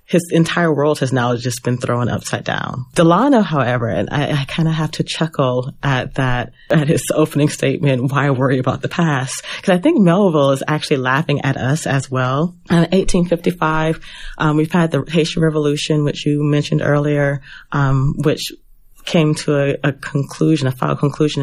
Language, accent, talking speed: English, American, 175 wpm